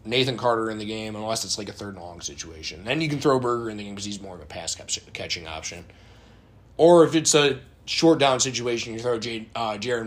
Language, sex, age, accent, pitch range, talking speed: English, male, 20-39, American, 100-125 Hz, 240 wpm